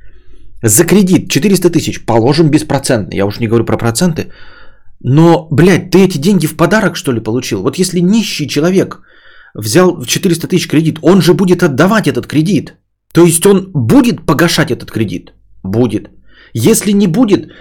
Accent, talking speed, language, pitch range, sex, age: native, 160 wpm, Russian, 130-190 Hz, male, 30-49